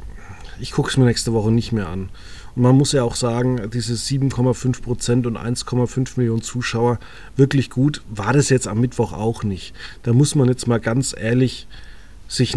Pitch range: 115-135 Hz